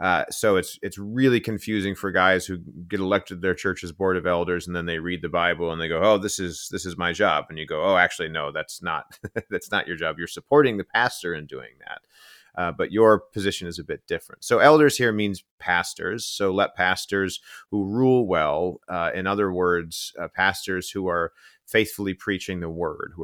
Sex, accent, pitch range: male, American, 85-100 Hz